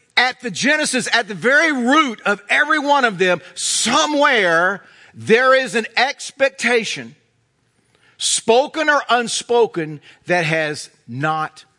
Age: 50-69